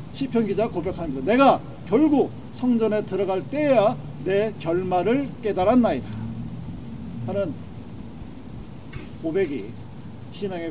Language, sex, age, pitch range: Korean, male, 40-59, 135-185 Hz